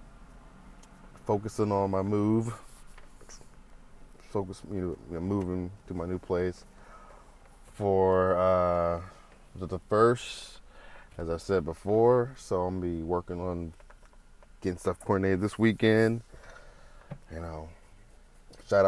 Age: 20-39